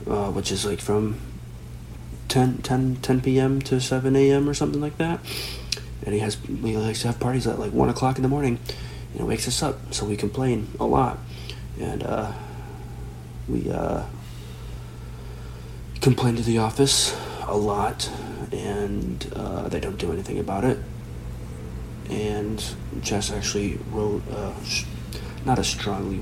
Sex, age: male, 40-59